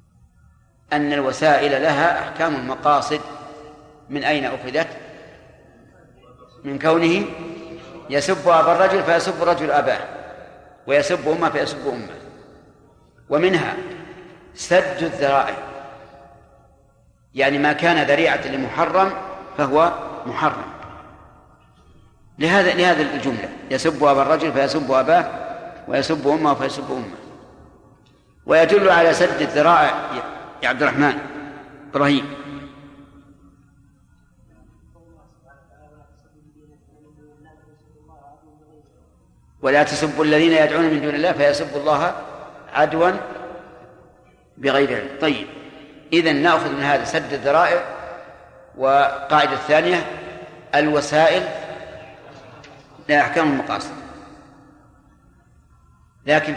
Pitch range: 140-160 Hz